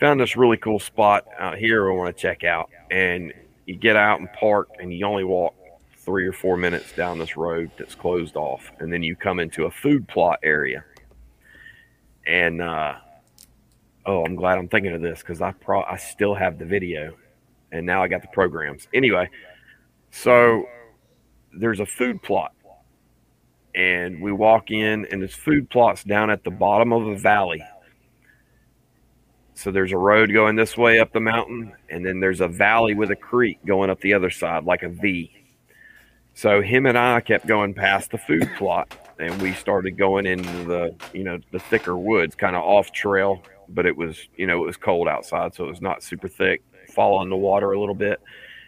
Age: 30-49